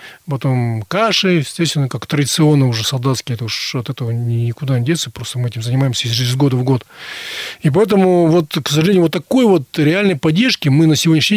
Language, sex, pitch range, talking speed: Russian, male, 130-165 Hz, 185 wpm